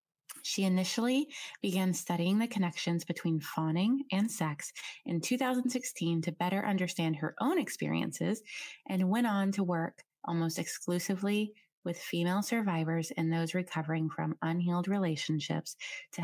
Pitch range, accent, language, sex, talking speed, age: 165-215 Hz, American, English, female, 130 wpm, 20-39